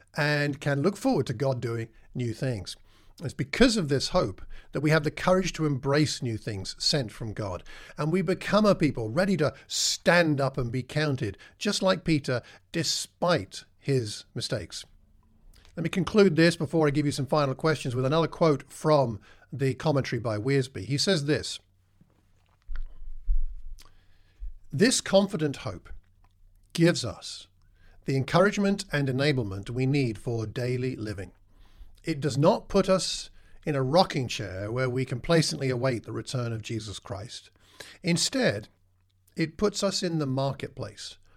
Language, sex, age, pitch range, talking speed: English, male, 50-69, 105-160 Hz, 150 wpm